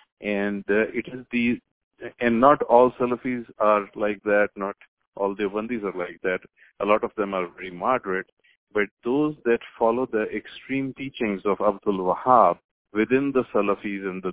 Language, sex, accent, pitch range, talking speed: English, male, Indian, 100-120 Hz, 170 wpm